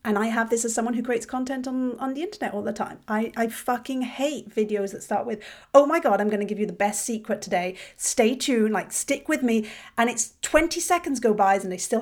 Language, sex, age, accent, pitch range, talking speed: English, female, 40-59, British, 200-250 Hz, 250 wpm